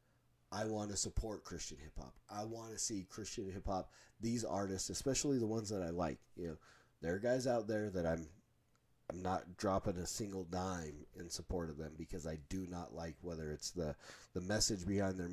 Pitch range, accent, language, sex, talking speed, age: 85-105 Hz, American, English, male, 200 wpm, 30-49